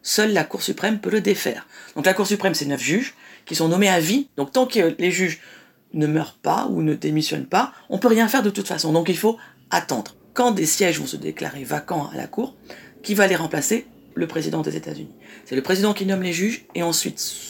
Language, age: French, 40-59